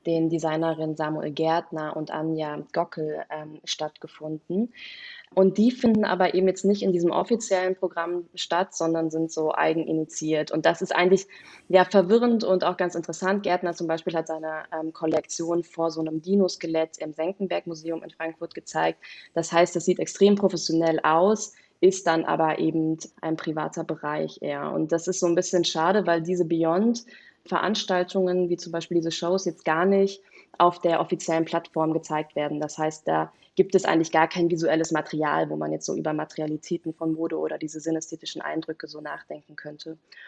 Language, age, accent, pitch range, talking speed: German, 20-39, German, 160-185 Hz, 175 wpm